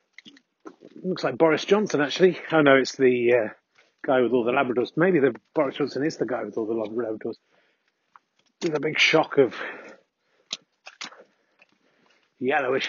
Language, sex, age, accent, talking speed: English, male, 30-49, British, 150 wpm